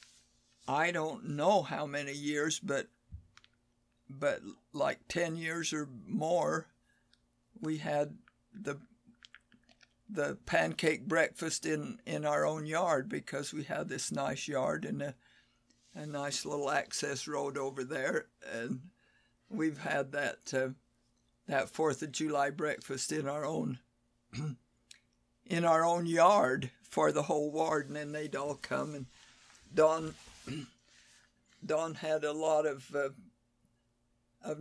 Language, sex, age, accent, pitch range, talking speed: English, male, 60-79, American, 120-150 Hz, 130 wpm